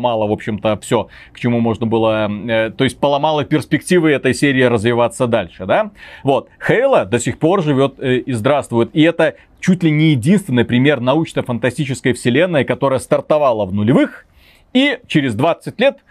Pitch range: 120-155 Hz